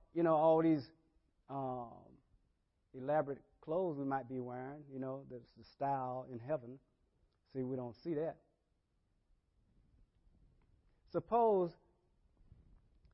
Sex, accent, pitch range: male, American, 105-150 Hz